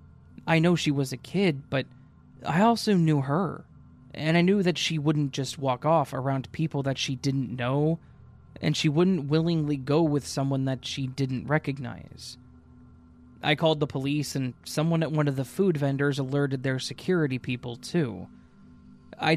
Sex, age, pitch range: male, 20-39, 130-155 Hz